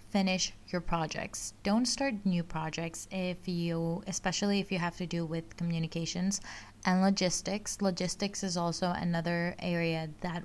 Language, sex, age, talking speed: English, female, 20-39, 145 wpm